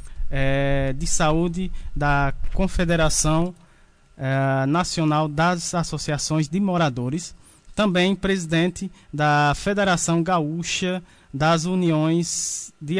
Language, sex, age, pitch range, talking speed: Portuguese, male, 20-39, 140-180 Hz, 90 wpm